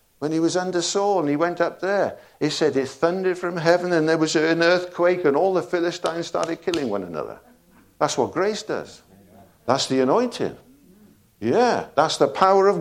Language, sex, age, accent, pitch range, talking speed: English, male, 60-79, British, 90-145 Hz, 190 wpm